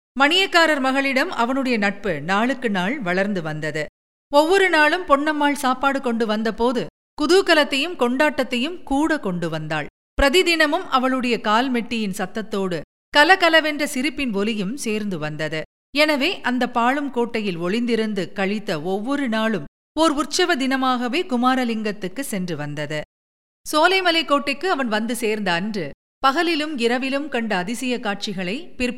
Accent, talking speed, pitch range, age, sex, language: native, 110 wpm, 205-290 Hz, 50-69, female, Tamil